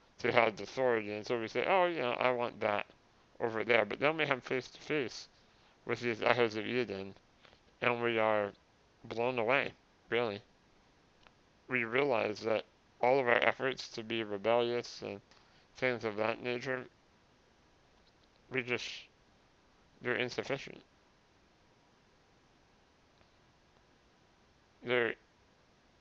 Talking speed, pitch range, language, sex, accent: 120 wpm, 110-125 Hz, English, male, American